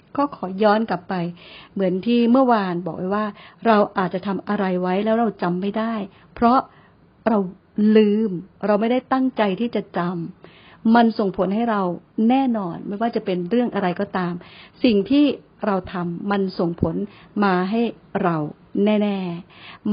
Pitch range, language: 180-230 Hz, Thai